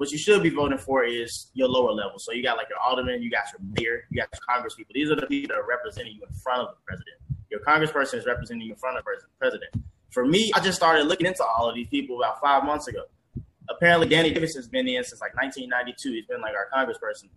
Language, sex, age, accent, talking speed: English, male, 20-39, American, 265 wpm